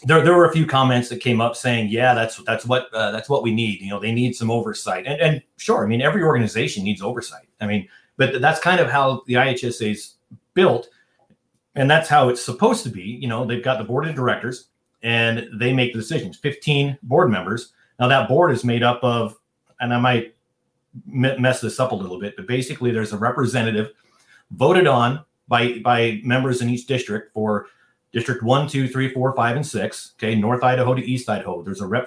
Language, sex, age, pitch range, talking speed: English, male, 30-49, 110-130 Hz, 215 wpm